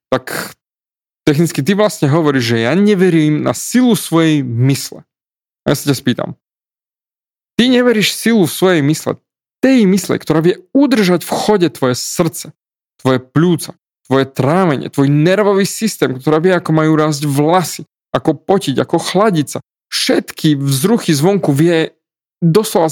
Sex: male